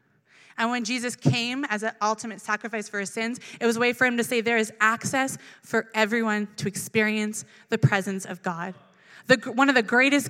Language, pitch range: English, 185-230 Hz